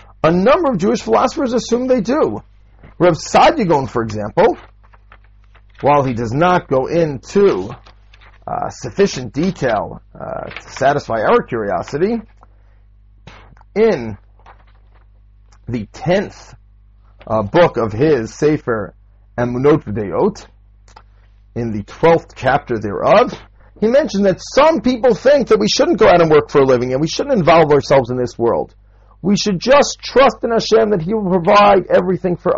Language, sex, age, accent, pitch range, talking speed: English, male, 40-59, American, 100-165 Hz, 140 wpm